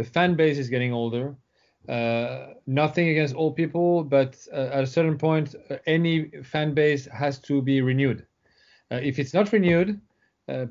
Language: English